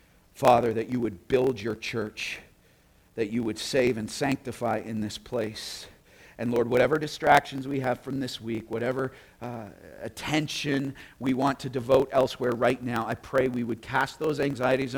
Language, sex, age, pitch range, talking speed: English, male, 50-69, 115-160 Hz, 170 wpm